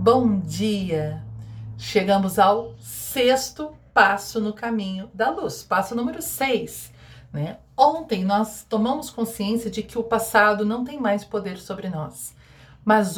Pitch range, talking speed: 195-245 Hz, 130 wpm